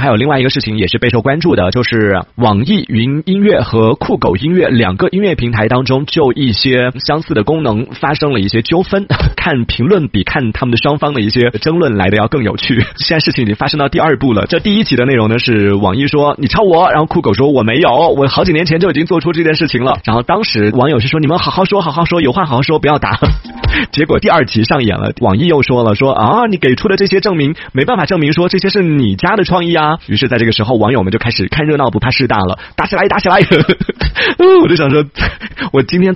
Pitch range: 115-160 Hz